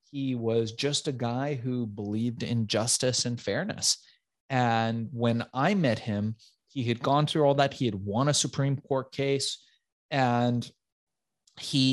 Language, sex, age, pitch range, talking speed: English, male, 30-49, 120-145 Hz, 155 wpm